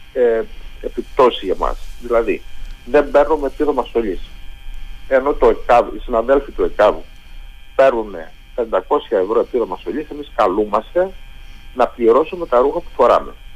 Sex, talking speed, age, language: male, 130 wpm, 50-69, Greek